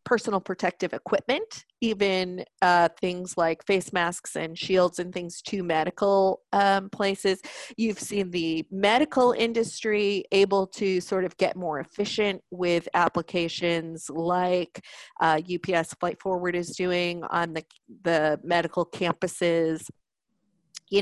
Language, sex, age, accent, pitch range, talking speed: English, female, 30-49, American, 180-210 Hz, 125 wpm